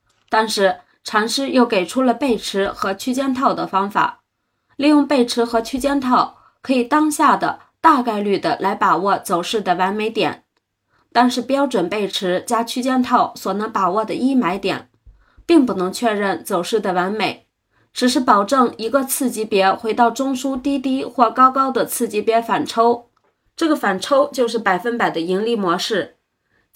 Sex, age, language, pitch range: female, 20-39, Chinese, 210-275 Hz